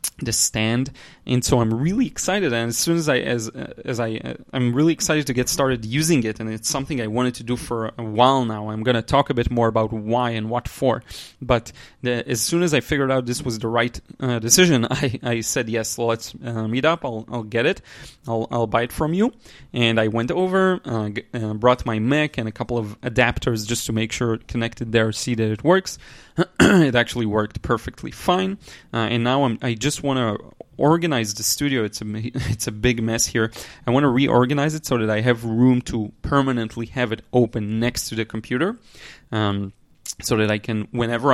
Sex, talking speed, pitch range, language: male, 225 wpm, 110-135 Hz, English